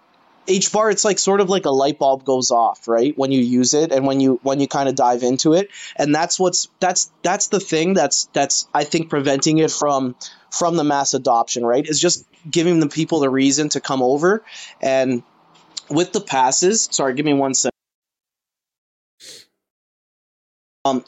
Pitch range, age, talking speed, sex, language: 135-170 Hz, 20-39, 185 wpm, male, English